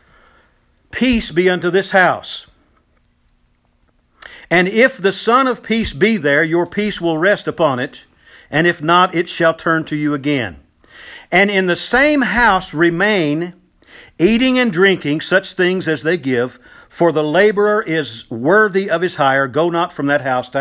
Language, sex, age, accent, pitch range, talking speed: English, male, 50-69, American, 135-200 Hz, 165 wpm